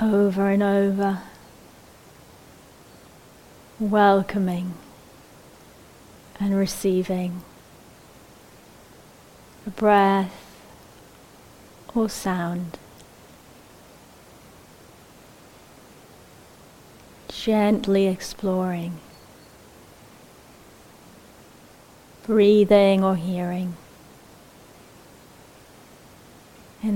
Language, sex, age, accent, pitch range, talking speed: English, female, 30-49, British, 180-200 Hz, 35 wpm